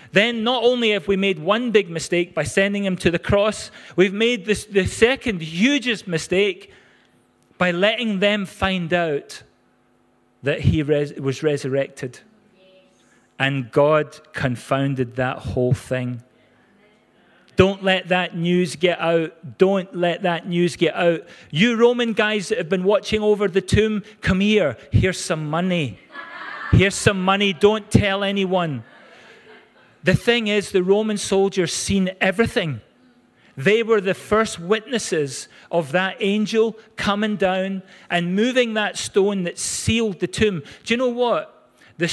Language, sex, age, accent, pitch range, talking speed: English, male, 40-59, British, 155-210 Hz, 140 wpm